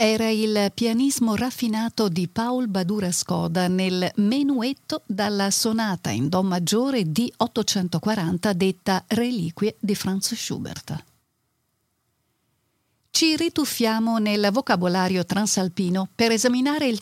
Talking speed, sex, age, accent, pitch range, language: 105 wpm, female, 50-69, native, 180-250 Hz, Italian